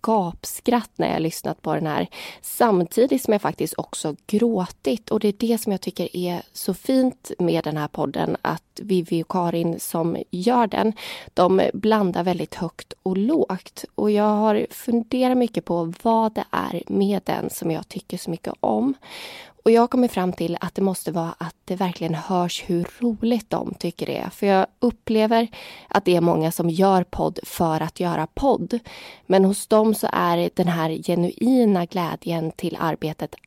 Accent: native